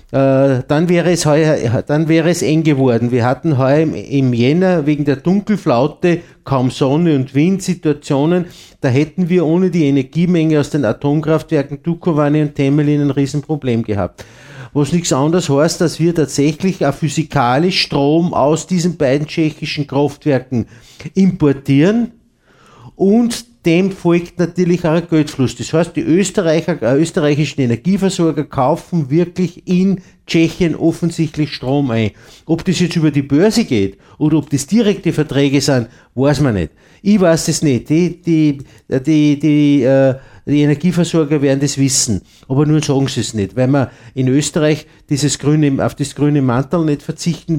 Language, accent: German, Austrian